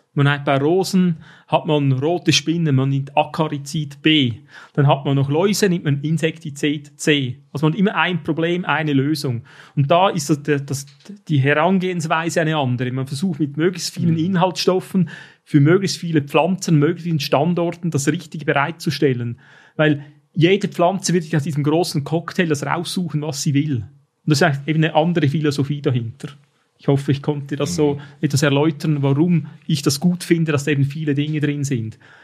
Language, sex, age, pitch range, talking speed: German, male, 40-59, 145-170 Hz, 175 wpm